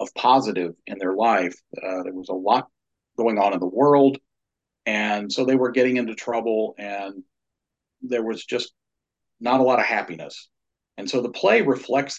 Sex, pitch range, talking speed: male, 100-125 Hz, 175 wpm